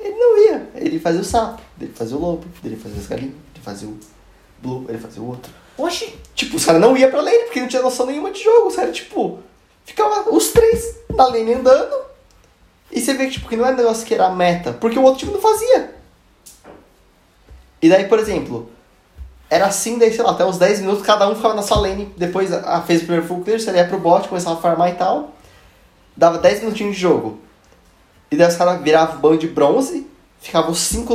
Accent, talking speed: Brazilian, 225 wpm